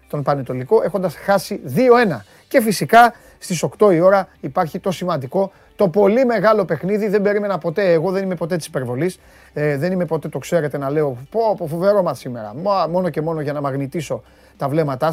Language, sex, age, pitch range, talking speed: Greek, male, 30-49, 140-180 Hz, 190 wpm